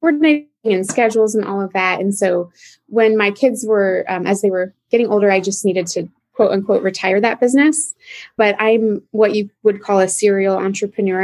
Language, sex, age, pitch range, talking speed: English, female, 20-39, 190-230 Hz, 200 wpm